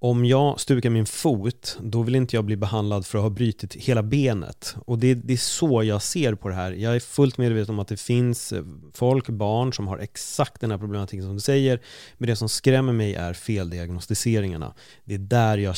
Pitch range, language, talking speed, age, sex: 105-130 Hz, Swedish, 215 wpm, 30-49, male